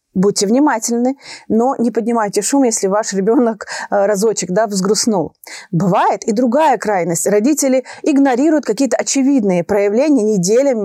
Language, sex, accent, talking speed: Russian, female, native, 115 wpm